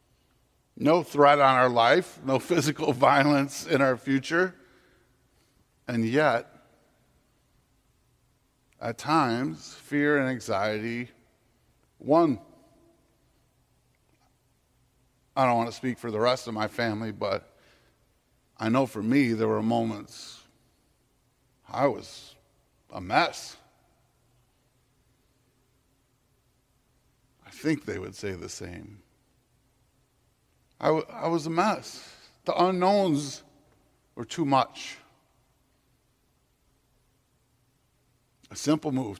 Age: 50-69